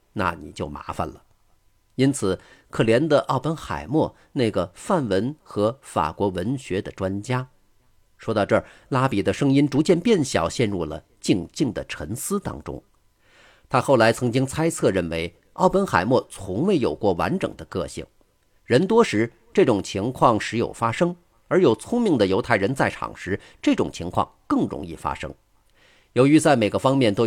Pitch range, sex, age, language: 95-130 Hz, male, 50-69, Chinese